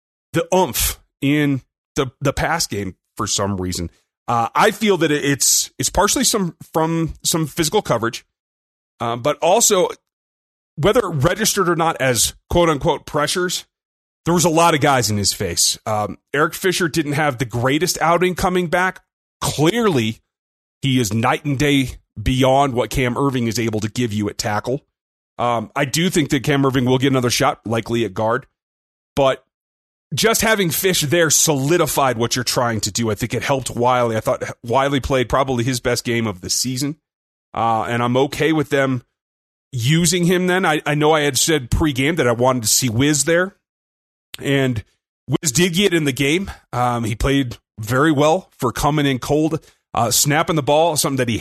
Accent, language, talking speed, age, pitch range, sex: American, English, 185 wpm, 30-49, 120-160 Hz, male